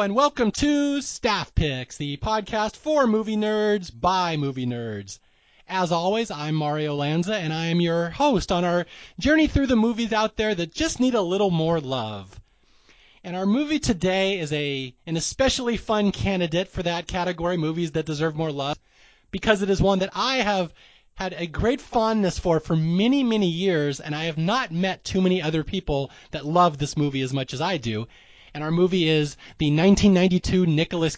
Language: English